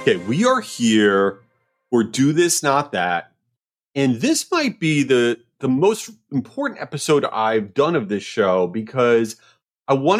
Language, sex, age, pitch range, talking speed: English, male, 30-49, 120-195 Hz, 155 wpm